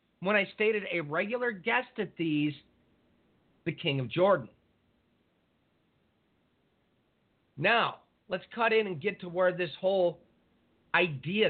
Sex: male